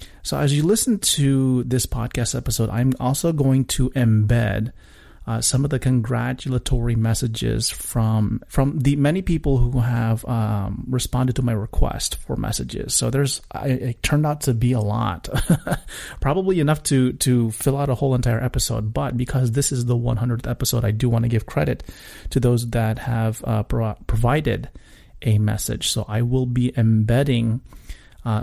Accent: American